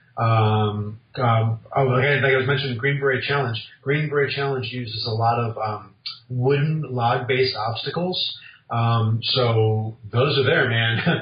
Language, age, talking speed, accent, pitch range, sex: English, 40-59, 150 wpm, American, 115-130 Hz, male